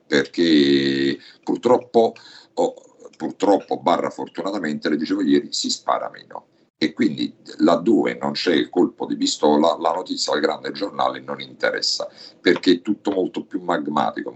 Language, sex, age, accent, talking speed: Italian, male, 50-69, native, 140 wpm